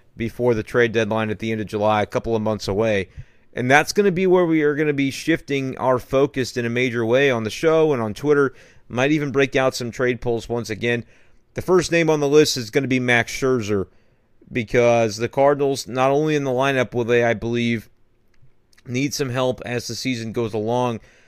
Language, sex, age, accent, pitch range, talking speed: English, male, 30-49, American, 115-135 Hz, 225 wpm